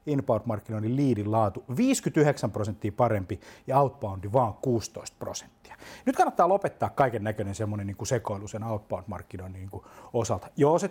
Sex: male